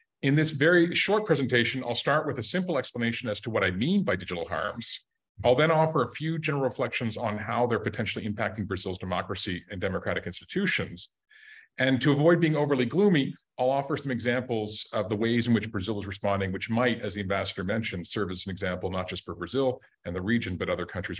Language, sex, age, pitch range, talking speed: English, male, 40-59, 105-140 Hz, 210 wpm